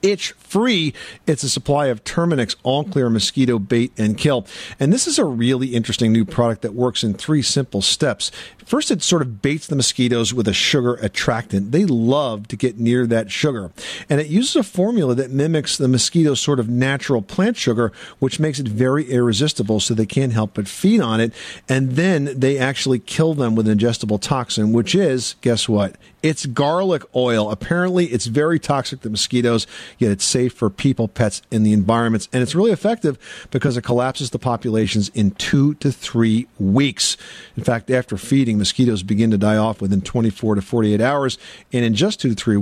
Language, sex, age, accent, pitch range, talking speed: English, male, 50-69, American, 110-145 Hz, 195 wpm